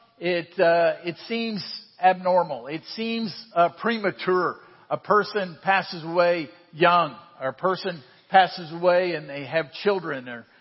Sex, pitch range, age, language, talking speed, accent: male, 165-215 Hz, 50-69, English, 135 wpm, American